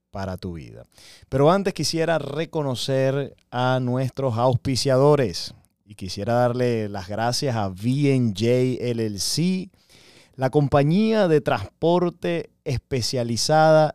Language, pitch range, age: Spanish, 110-145 Hz, 30-49